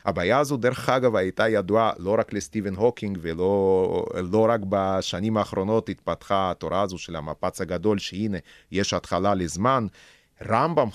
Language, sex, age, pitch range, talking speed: Hebrew, male, 30-49, 90-120 Hz, 145 wpm